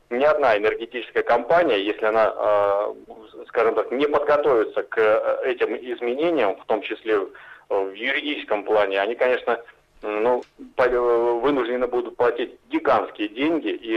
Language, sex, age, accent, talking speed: Russian, male, 30-49, native, 120 wpm